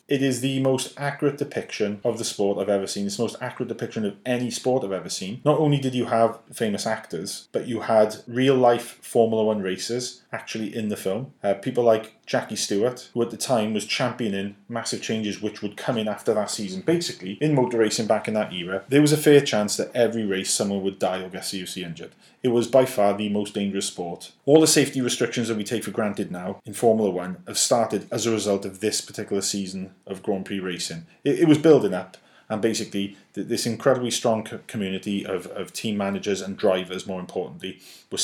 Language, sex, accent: English, male, British